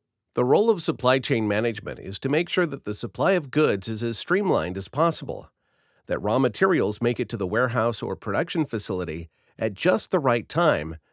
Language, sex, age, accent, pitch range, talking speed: English, male, 50-69, American, 110-150 Hz, 195 wpm